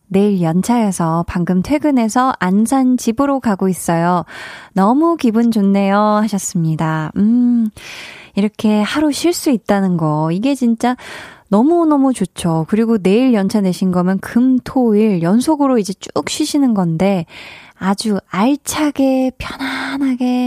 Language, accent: Korean, native